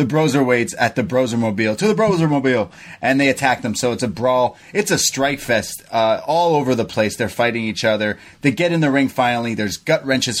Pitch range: 105-145 Hz